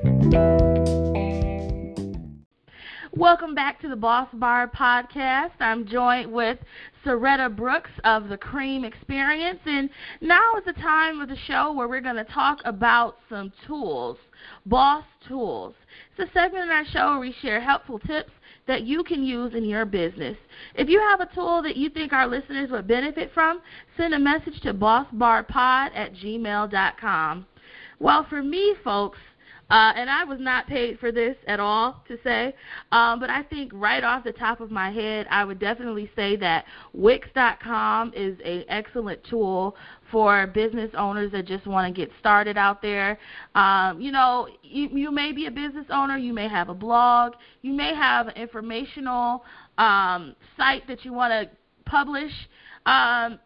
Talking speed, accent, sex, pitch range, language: 165 wpm, American, female, 210-280 Hz, English